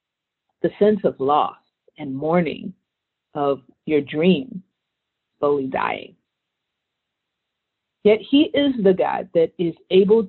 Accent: American